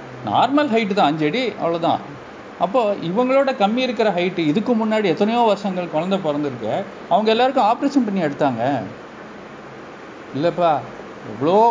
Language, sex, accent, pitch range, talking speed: Tamil, male, native, 170-235 Hz, 120 wpm